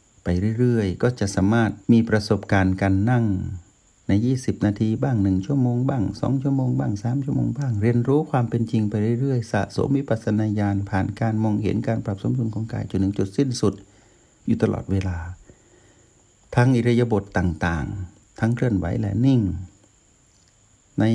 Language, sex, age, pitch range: Thai, male, 60-79, 95-115 Hz